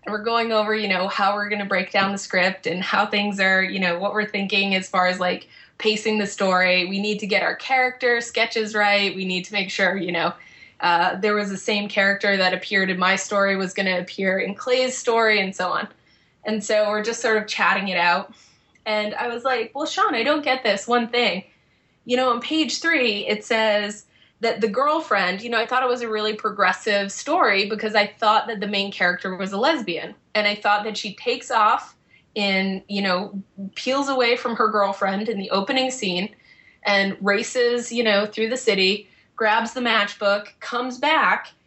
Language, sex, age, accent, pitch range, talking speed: English, female, 20-39, American, 195-235 Hz, 215 wpm